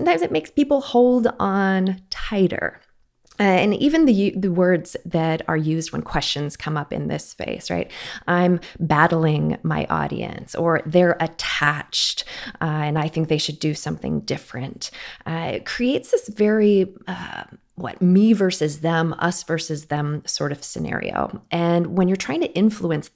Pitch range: 155-190 Hz